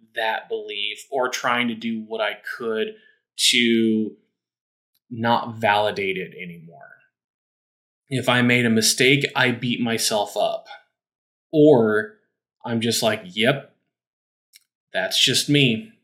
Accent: American